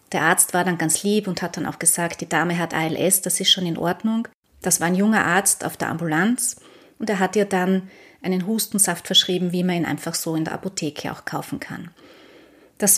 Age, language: 30-49, German